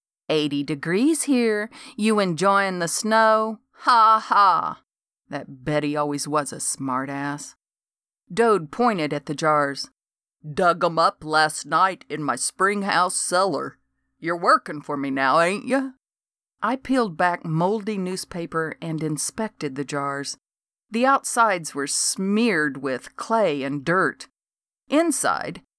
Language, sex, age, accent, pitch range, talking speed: English, female, 50-69, American, 155-220 Hz, 130 wpm